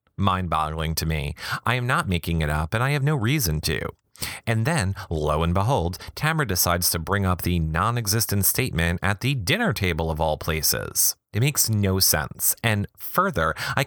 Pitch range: 80-105 Hz